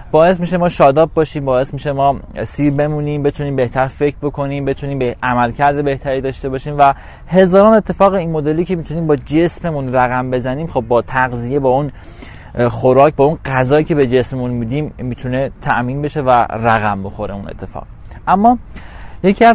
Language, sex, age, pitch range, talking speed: Persian, male, 20-39, 115-150 Hz, 165 wpm